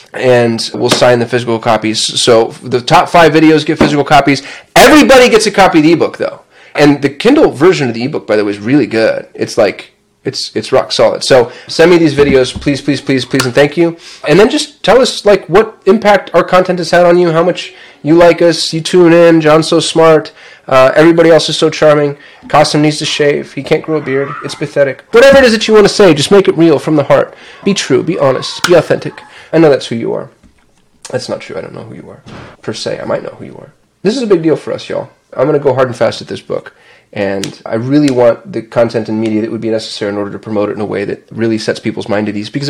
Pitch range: 125-175 Hz